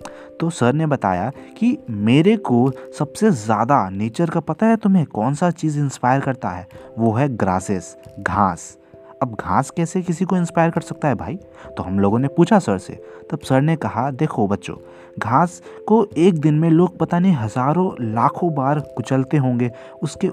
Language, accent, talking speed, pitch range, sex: Hindi, native, 180 wpm, 115-170 Hz, male